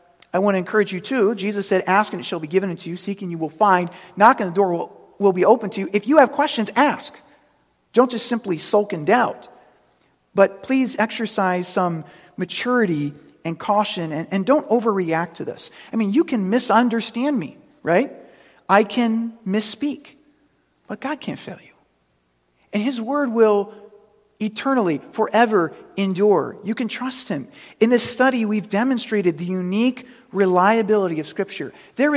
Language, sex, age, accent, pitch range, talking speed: English, male, 40-59, American, 185-240 Hz, 170 wpm